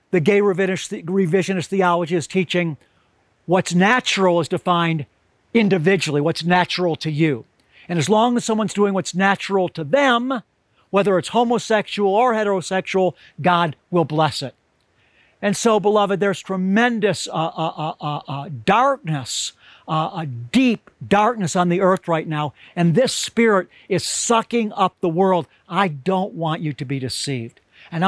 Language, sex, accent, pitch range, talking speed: English, male, American, 160-205 Hz, 145 wpm